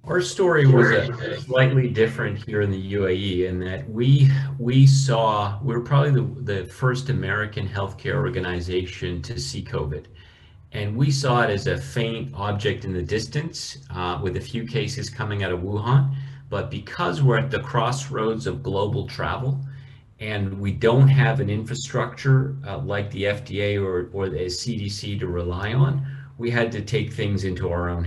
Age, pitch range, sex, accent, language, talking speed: 40-59, 100-135 Hz, male, American, English, 170 wpm